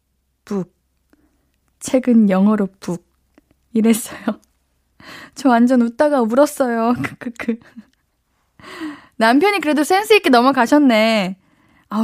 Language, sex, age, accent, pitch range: Korean, female, 20-39, native, 220-295 Hz